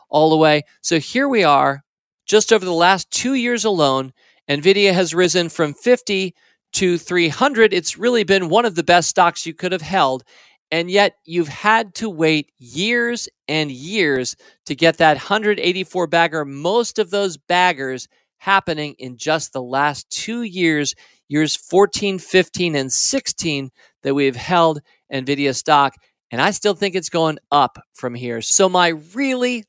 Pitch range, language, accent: 145-195 Hz, English, American